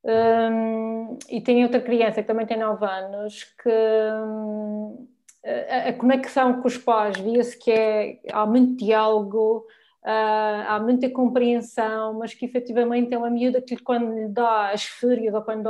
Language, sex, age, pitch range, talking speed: Portuguese, female, 20-39, 220-255 Hz, 155 wpm